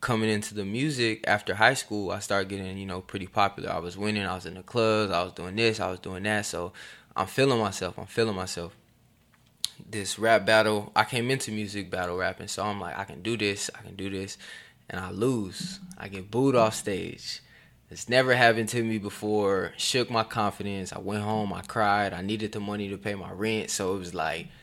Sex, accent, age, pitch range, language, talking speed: male, American, 20-39, 95-110 Hz, English, 220 wpm